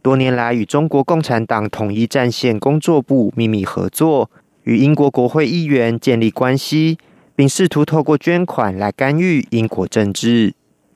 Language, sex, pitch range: Russian, male, 120-155 Hz